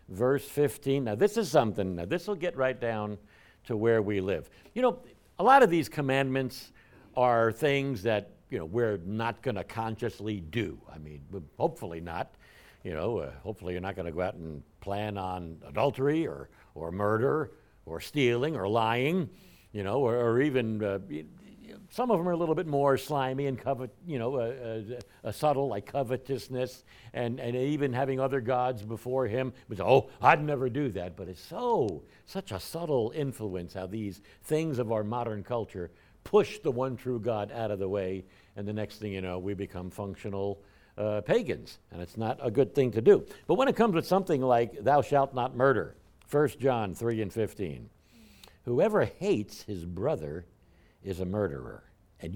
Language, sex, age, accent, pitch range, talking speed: English, male, 60-79, American, 100-135 Hz, 190 wpm